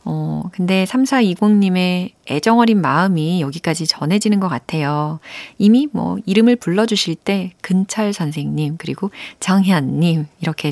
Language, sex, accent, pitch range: Korean, female, native, 155-230 Hz